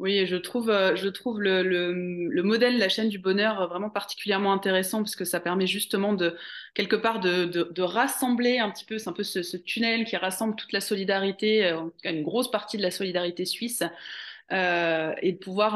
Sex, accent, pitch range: female, French, 180-220 Hz